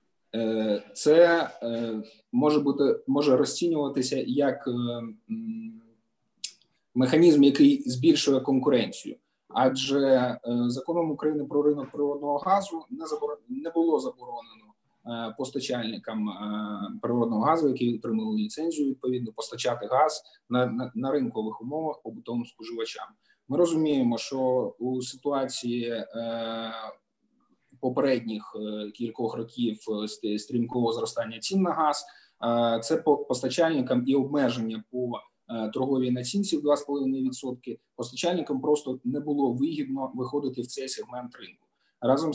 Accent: native